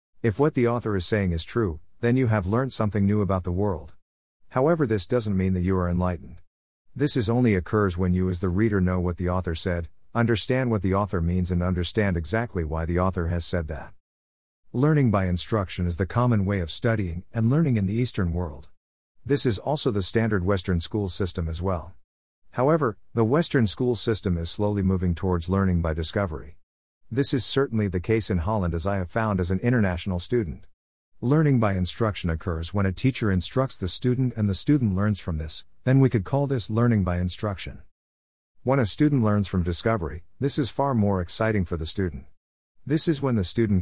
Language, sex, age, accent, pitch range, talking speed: English, male, 50-69, American, 85-115 Hz, 205 wpm